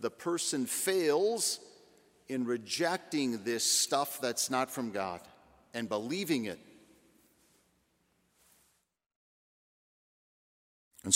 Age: 50-69